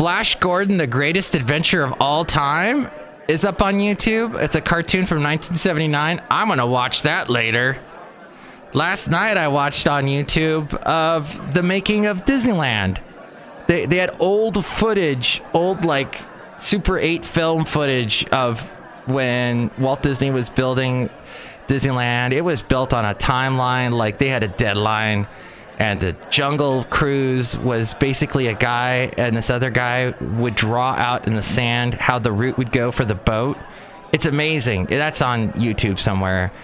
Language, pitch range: English, 120-155 Hz